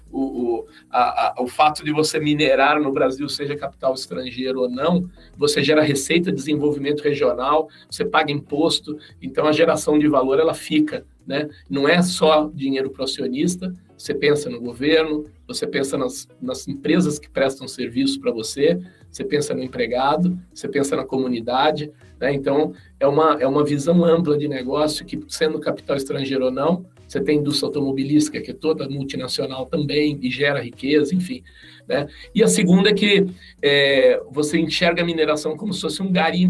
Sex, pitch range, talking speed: male, 145-170 Hz, 175 wpm